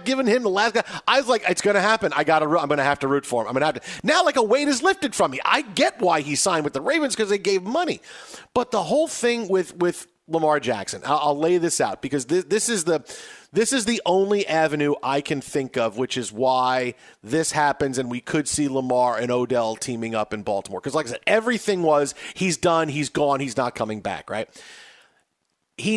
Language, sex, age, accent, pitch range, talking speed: English, male, 40-59, American, 130-170 Hz, 240 wpm